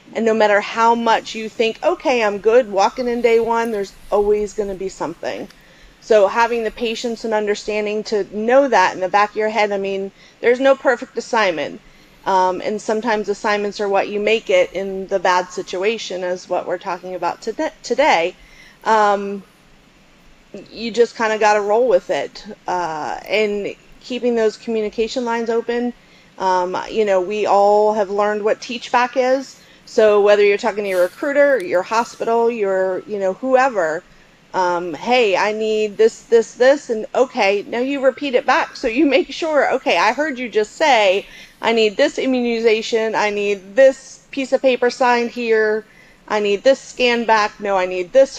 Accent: American